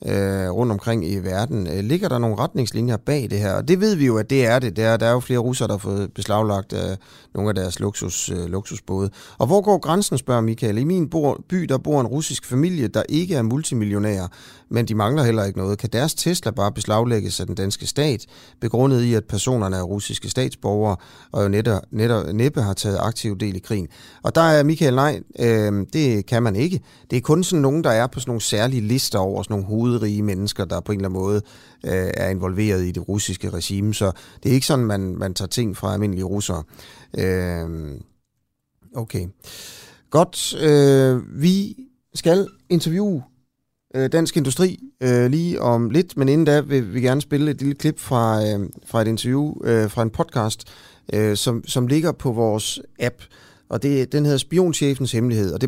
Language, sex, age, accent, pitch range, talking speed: Danish, male, 30-49, native, 100-140 Hz, 200 wpm